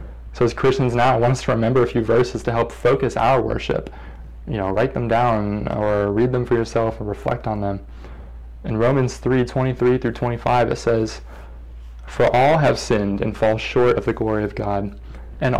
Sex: male